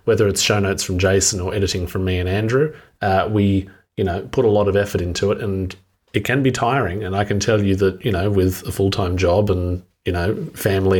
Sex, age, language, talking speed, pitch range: male, 30-49, English, 240 wpm, 95-110 Hz